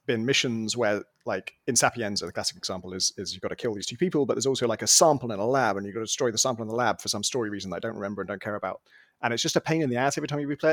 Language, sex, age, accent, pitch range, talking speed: English, male, 30-49, British, 110-135 Hz, 340 wpm